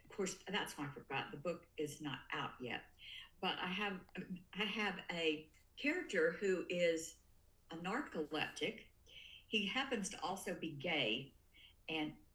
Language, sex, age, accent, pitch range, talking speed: English, female, 50-69, American, 145-185 Hz, 145 wpm